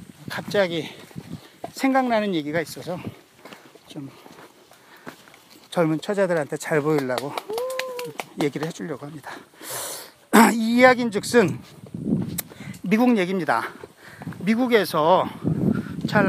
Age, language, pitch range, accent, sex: 40-59, Korean, 175-230 Hz, native, male